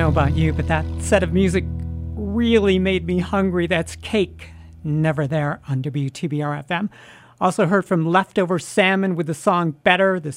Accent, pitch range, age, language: American, 155-195 Hz, 50-69, English